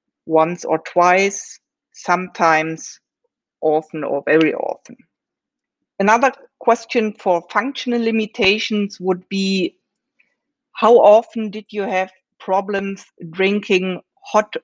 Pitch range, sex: 180-235 Hz, female